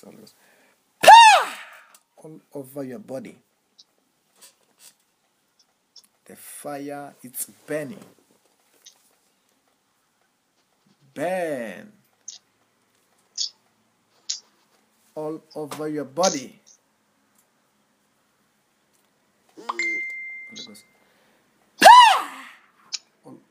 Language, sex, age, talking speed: English, male, 50-69, 35 wpm